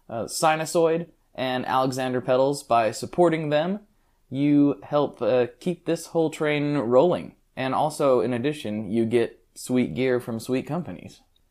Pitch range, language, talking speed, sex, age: 120-155 Hz, English, 140 wpm, male, 20-39